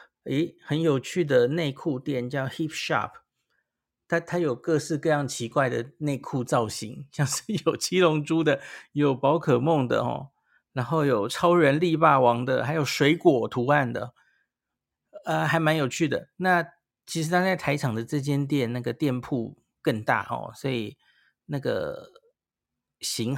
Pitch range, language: 125-165 Hz, Chinese